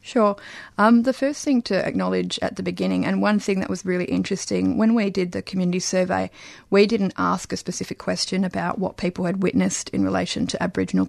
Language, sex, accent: English, female, Australian